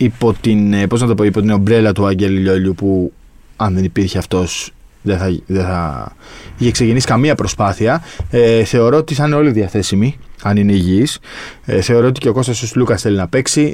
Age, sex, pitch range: 20-39, male, 100-115 Hz